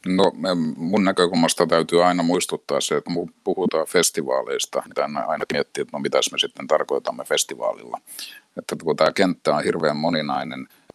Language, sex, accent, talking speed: Finnish, male, native, 135 wpm